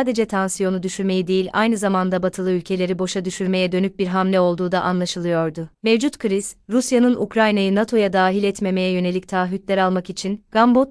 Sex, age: female, 30-49